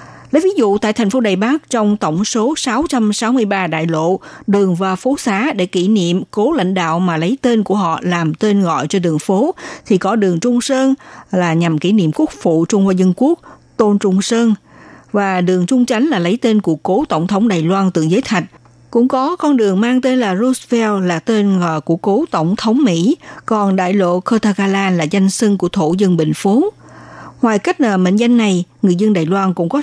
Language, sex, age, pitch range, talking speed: Vietnamese, female, 60-79, 180-245 Hz, 215 wpm